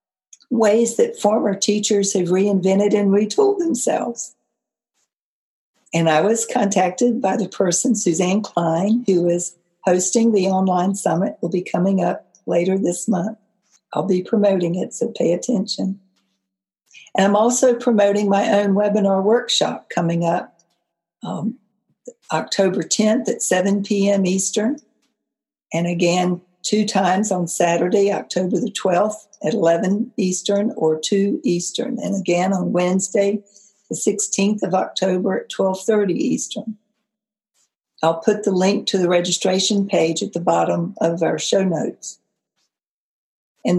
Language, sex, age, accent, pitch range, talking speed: English, female, 60-79, American, 180-215 Hz, 135 wpm